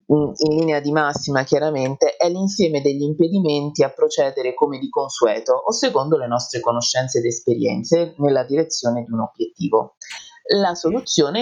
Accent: native